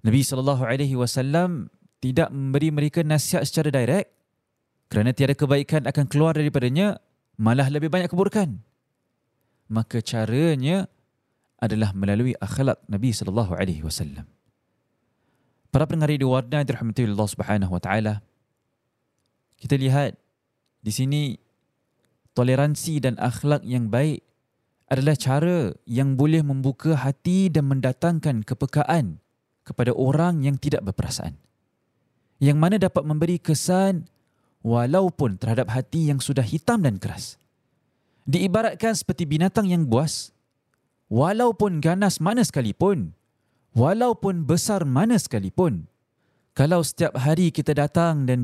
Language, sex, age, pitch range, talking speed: Malay, male, 20-39, 120-160 Hz, 110 wpm